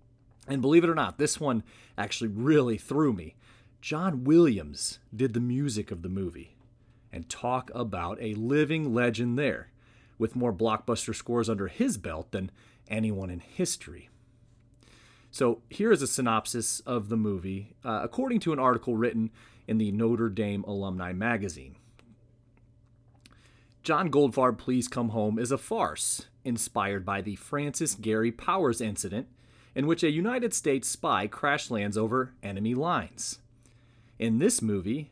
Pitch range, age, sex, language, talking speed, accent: 110-130 Hz, 30-49, male, English, 145 wpm, American